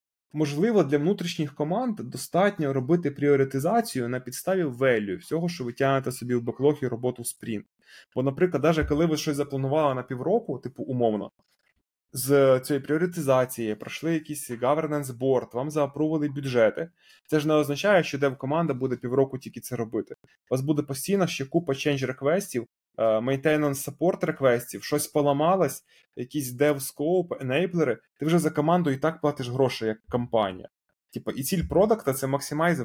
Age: 20-39